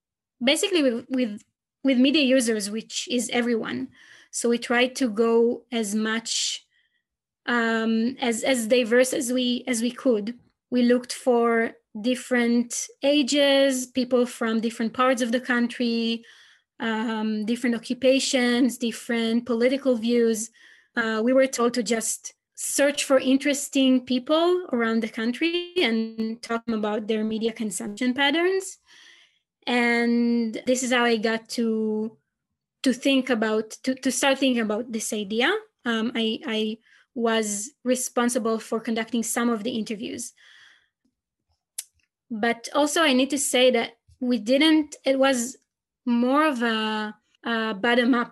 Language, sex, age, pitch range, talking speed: English, female, 20-39, 230-265 Hz, 135 wpm